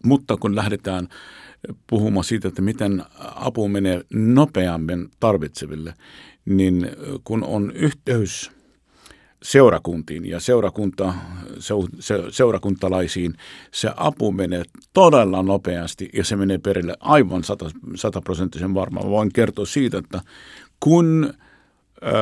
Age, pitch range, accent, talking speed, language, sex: 50-69, 95-120 Hz, native, 95 wpm, Finnish, male